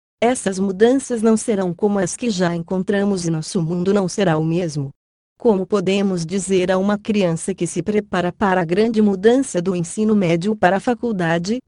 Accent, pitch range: Brazilian, 175-215 Hz